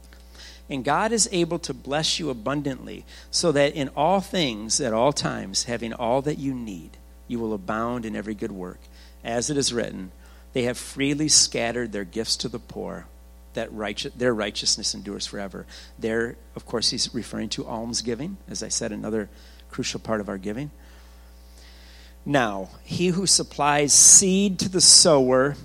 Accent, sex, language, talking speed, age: American, male, English, 165 wpm, 50-69